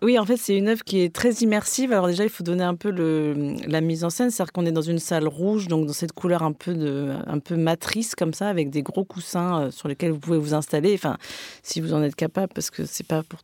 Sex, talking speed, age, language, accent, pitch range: female, 280 wpm, 30-49, French, French, 160-190 Hz